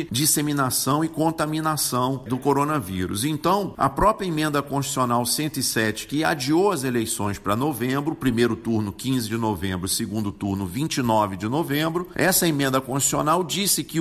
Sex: male